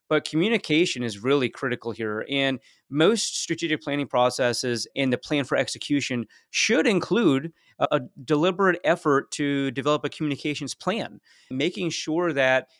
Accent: American